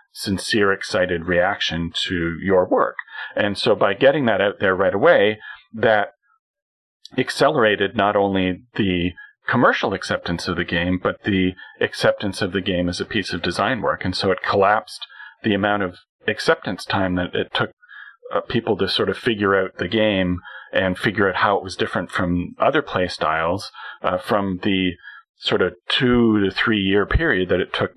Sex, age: male, 40-59